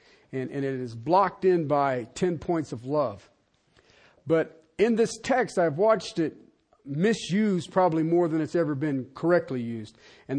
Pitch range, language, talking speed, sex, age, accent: 150-200 Hz, English, 160 wpm, male, 50-69, American